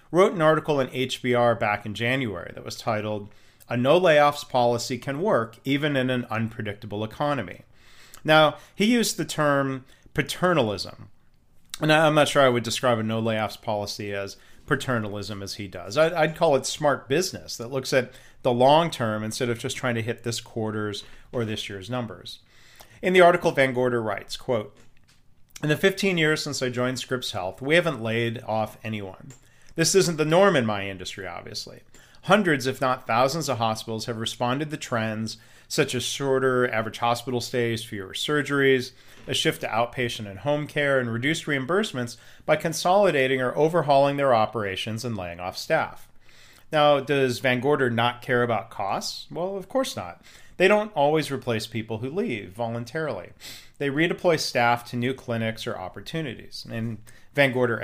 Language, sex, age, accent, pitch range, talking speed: English, male, 40-59, American, 115-145 Hz, 170 wpm